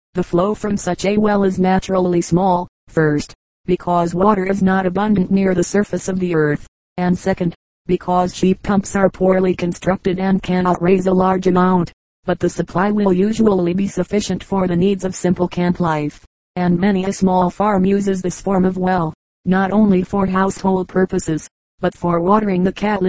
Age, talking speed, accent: 30-49, 180 wpm, American